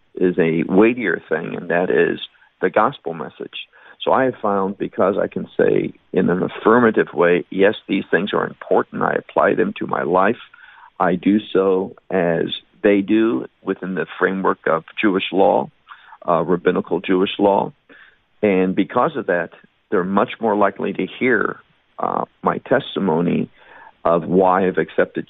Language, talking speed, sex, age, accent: English, 155 wpm, male, 50-69, American